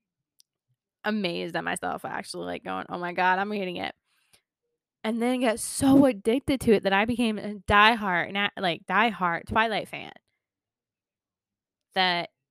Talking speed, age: 145 wpm, 10-29